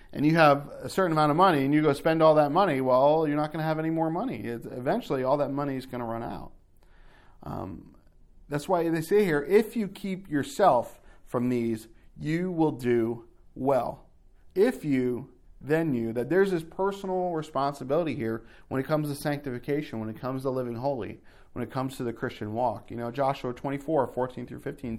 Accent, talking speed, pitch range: American, 200 wpm, 120-155 Hz